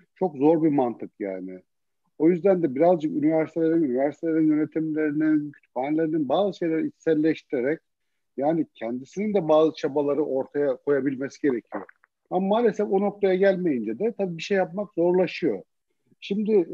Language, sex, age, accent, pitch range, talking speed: Turkish, male, 50-69, native, 150-185 Hz, 130 wpm